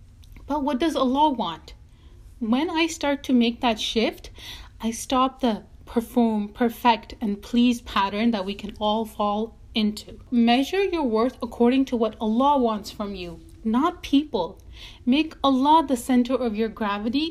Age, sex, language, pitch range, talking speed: 30-49, female, English, 230-285 Hz, 155 wpm